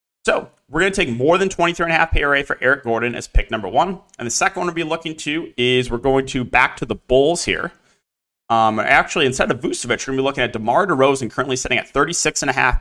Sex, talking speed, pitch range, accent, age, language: male, 235 wpm, 115-155 Hz, American, 30-49, English